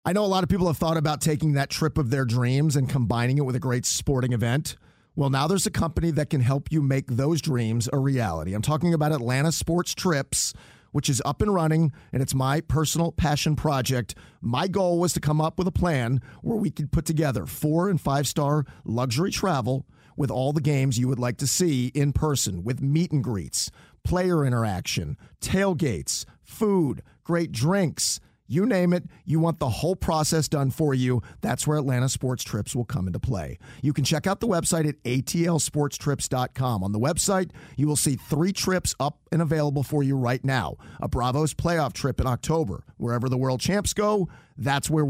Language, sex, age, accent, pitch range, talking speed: English, male, 40-59, American, 130-160 Hz, 195 wpm